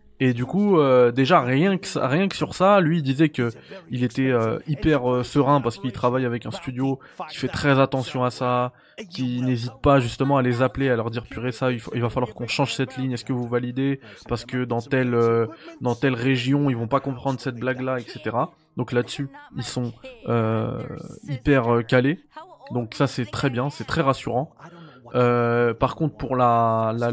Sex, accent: male, French